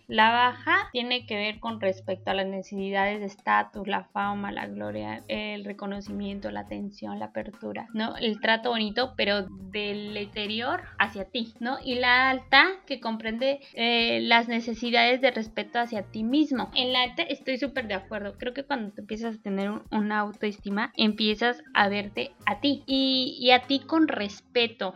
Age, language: 20-39, Spanish